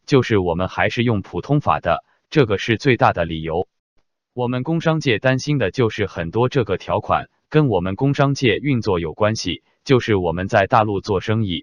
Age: 20-39